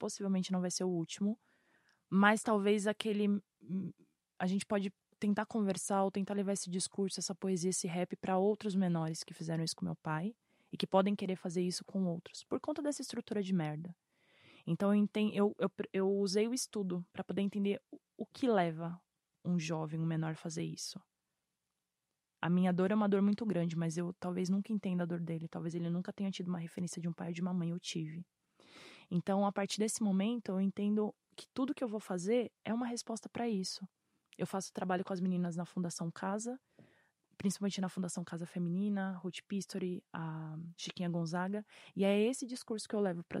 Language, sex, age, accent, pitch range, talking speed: Portuguese, female, 20-39, Brazilian, 175-210 Hz, 200 wpm